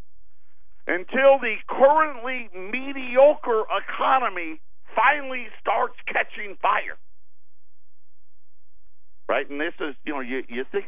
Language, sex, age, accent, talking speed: English, male, 50-69, American, 100 wpm